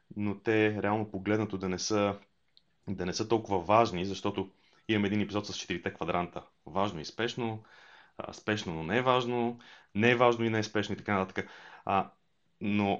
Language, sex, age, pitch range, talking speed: Bulgarian, male, 30-49, 95-130 Hz, 180 wpm